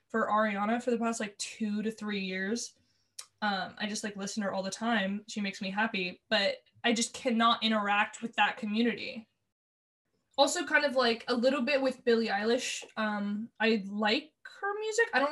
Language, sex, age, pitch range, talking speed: English, female, 20-39, 195-230 Hz, 190 wpm